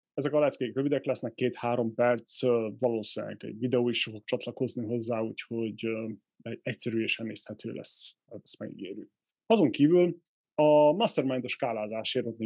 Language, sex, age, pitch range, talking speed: Hungarian, male, 20-39, 115-130 Hz, 120 wpm